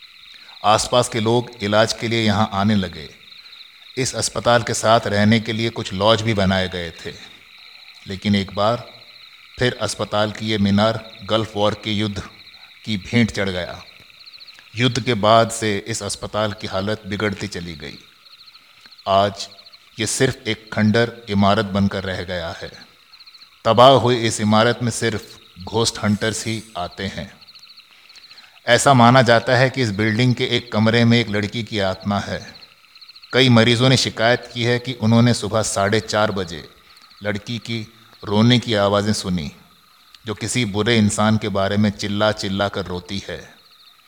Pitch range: 100-115 Hz